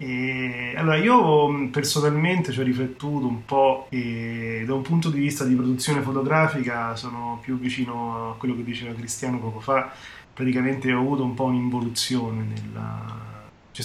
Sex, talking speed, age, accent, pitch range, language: male, 145 wpm, 30-49, native, 115-130 Hz, Italian